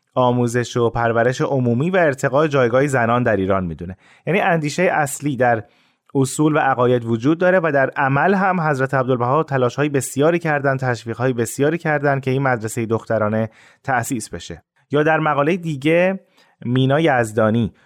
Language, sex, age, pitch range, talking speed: Persian, male, 30-49, 115-150 Hz, 150 wpm